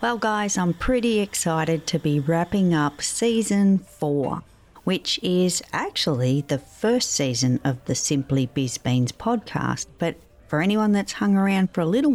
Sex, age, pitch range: female, 50-69, 140-190 Hz